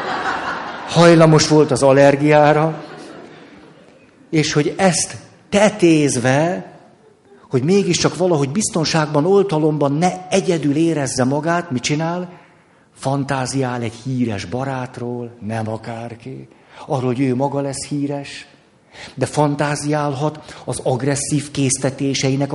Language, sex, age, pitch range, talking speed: Hungarian, male, 50-69, 130-170 Hz, 95 wpm